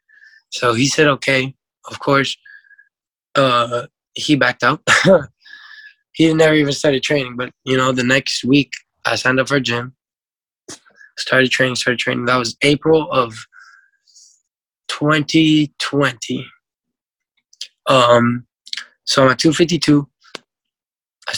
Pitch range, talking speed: 130-155 Hz, 120 wpm